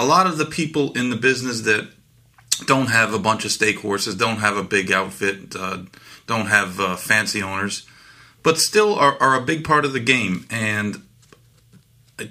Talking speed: 185 wpm